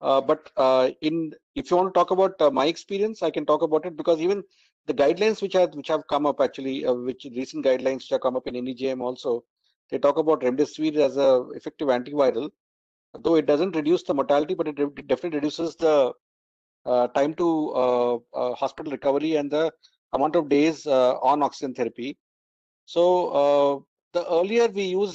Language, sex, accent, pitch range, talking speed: English, male, Indian, 130-165 Hz, 200 wpm